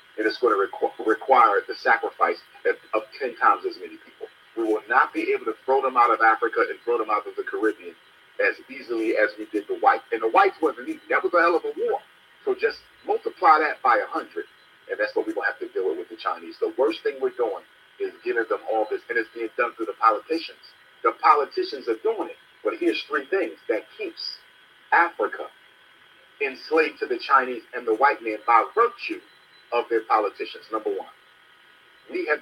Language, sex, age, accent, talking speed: English, male, 40-59, American, 210 wpm